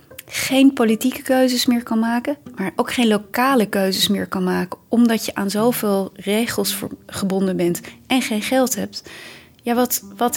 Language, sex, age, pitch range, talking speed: Dutch, female, 30-49, 185-240 Hz, 160 wpm